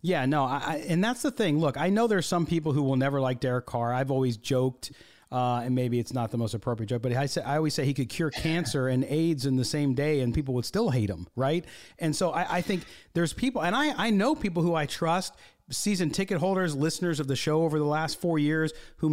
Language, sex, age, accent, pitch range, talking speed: English, male, 40-59, American, 130-175 Hz, 255 wpm